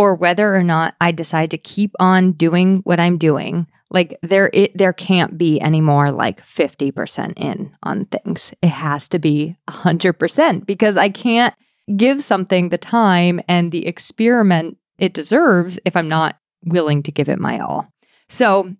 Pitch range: 170-210 Hz